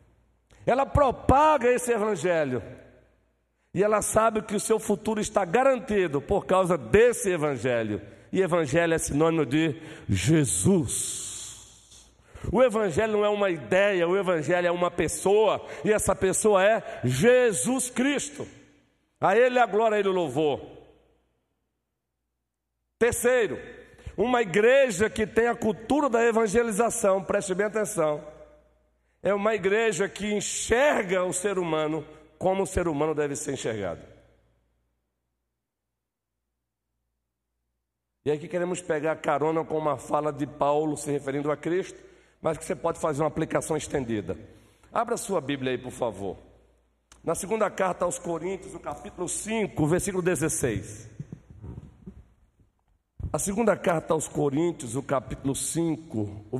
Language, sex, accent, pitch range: Portuguese, male, Brazilian, 130-205 Hz